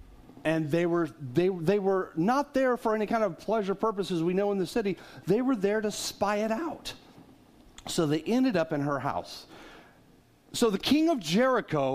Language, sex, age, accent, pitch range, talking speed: English, male, 40-59, American, 160-235 Hz, 180 wpm